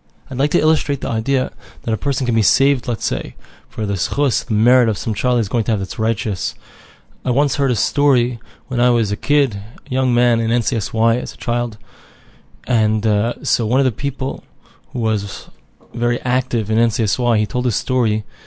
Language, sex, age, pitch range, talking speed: English, male, 20-39, 110-135 Hz, 200 wpm